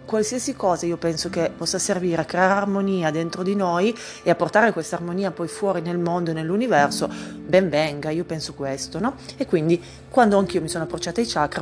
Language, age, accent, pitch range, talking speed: Italian, 30-49, native, 150-185 Hz, 200 wpm